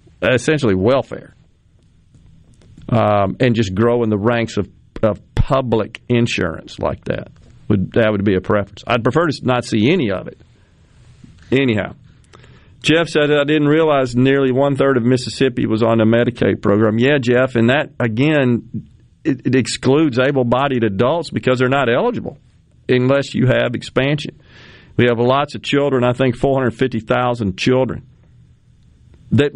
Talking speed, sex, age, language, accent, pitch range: 145 wpm, male, 40-59, English, American, 115-140 Hz